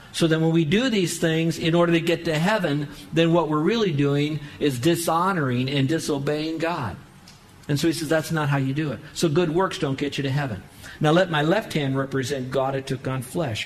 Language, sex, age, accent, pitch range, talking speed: English, male, 50-69, American, 140-165 Hz, 230 wpm